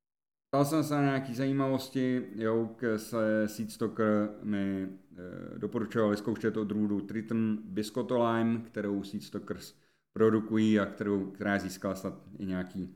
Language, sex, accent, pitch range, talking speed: Czech, male, native, 105-145 Hz, 110 wpm